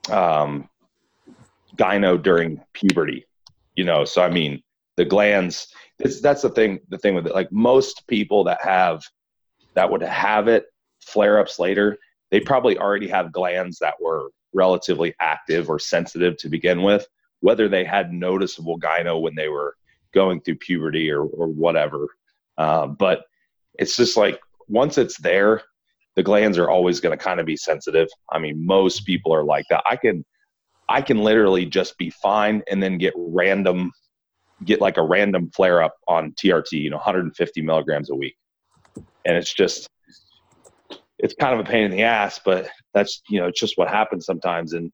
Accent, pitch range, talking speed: American, 85-110 Hz, 175 wpm